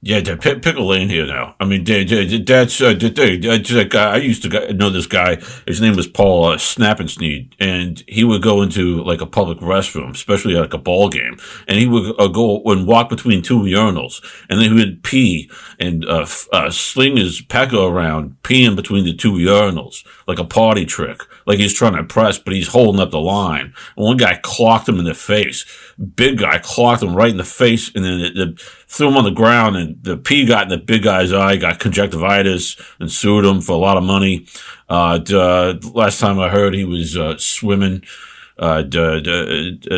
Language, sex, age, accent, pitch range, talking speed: English, male, 50-69, American, 85-110 Hz, 215 wpm